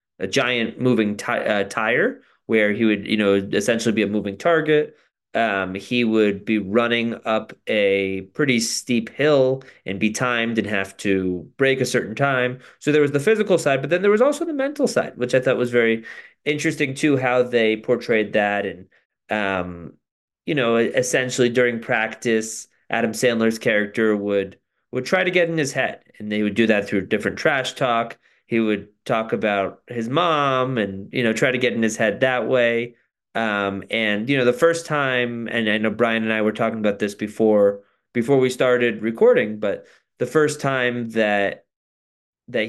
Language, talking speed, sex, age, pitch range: English, 185 wpm, male, 30-49, 105-125 Hz